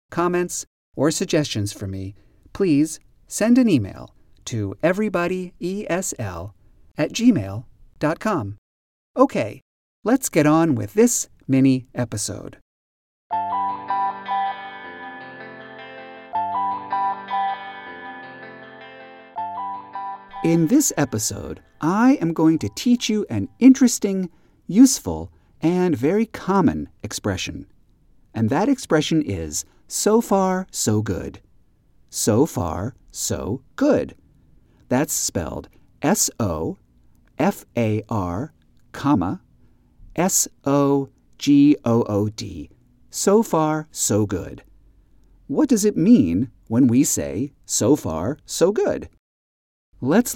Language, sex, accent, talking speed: English, male, American, 80 wpm